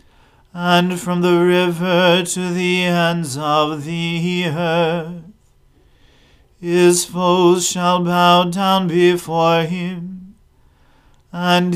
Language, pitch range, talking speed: English, 170-180 Hz, 90 wpm